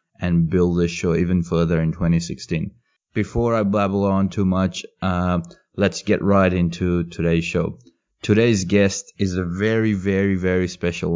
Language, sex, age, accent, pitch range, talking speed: English, male, 20-39, Australian, 85-95 Hz, 155 wpm